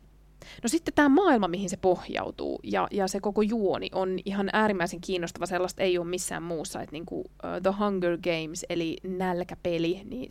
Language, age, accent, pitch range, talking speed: Finnish, 20-39, native, 175-225 Hz, 165 wpm